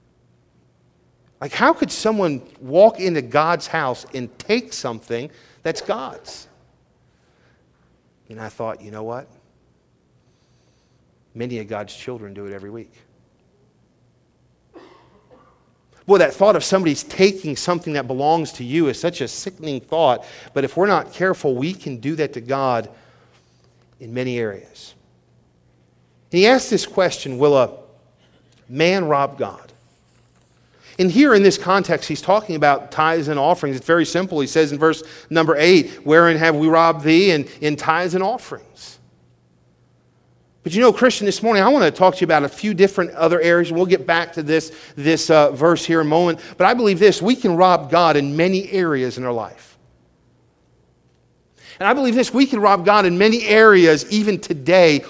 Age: 40-59